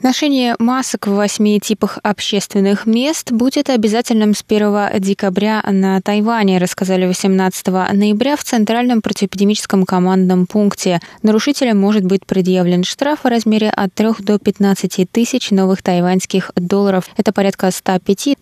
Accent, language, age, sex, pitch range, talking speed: native, Russian, 20-39, female, 185-230 Hz, 130 wpm